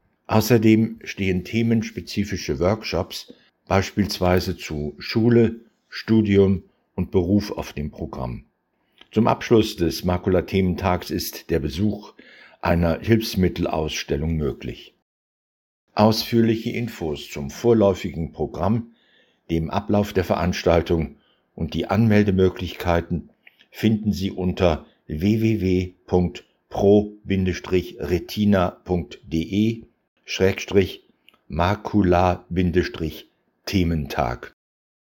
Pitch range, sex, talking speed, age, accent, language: 90-110 Hz, male, 70 wpm, 60-79, German, German